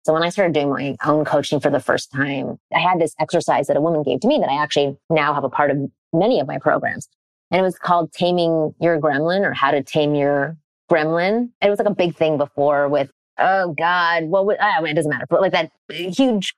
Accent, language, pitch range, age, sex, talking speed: American, English, 150-180 Hz, 30-49, female, 235 wpm